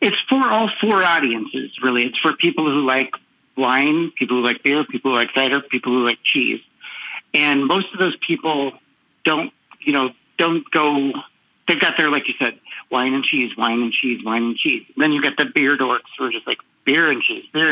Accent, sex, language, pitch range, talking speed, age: American, male, English, 130-170 Hz, 215 wpm, 50-69